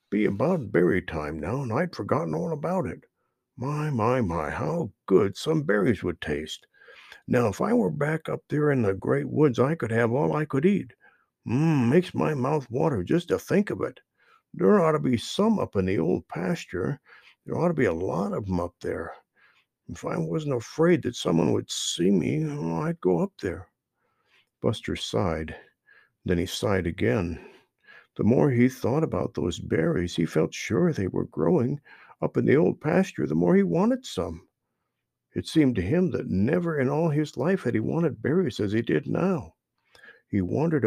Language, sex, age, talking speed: English, male, 60-79, 190 wpm